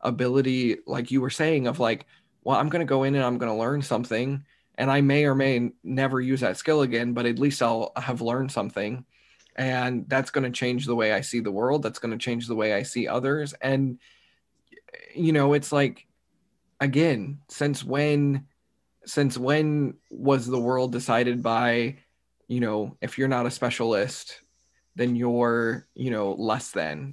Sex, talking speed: male, 185 wpm